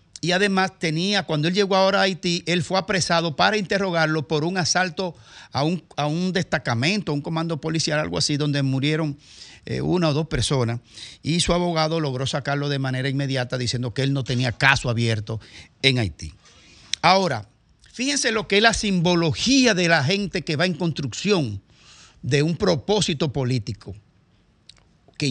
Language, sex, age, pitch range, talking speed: Spanish, male, 50-69, 130-175 Hz, 165 wpm